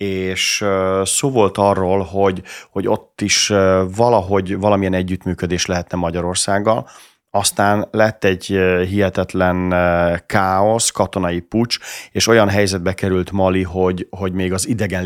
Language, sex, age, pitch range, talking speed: Hungarian, male, 30-49, 90-100 Hz, 120 wpm